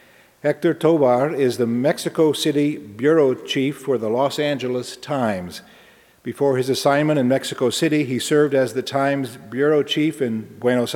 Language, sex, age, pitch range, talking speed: English, male, 50-69, 120-145 Hz, 155 wpm